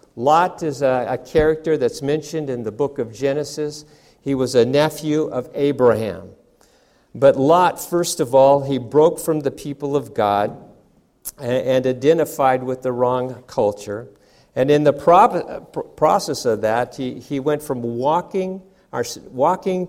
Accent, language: American, English